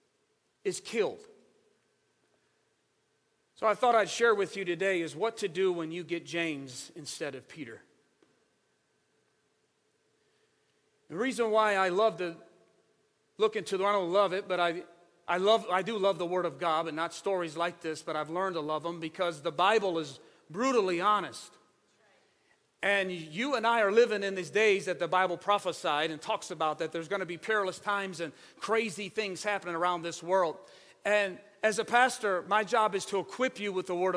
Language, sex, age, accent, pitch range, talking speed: English, male, 40-59, American, 185-255 Hz, 180 wpm